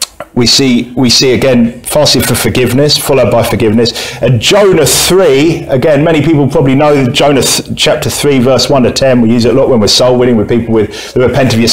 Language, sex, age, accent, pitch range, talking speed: English, male, 40-59, British, 120-165 Hz, 215 wpm